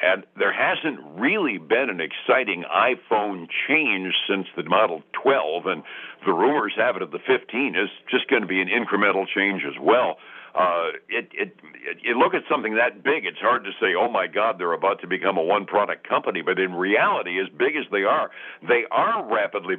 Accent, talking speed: American, 205 wpm